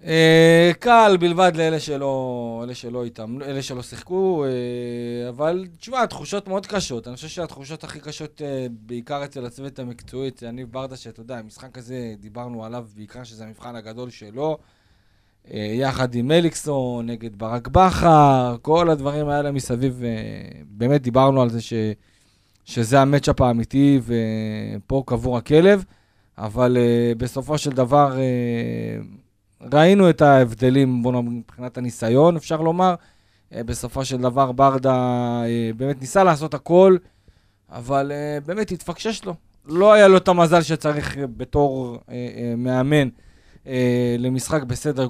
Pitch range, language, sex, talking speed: 120-150 Hz, Hebrew, male, 140 wpm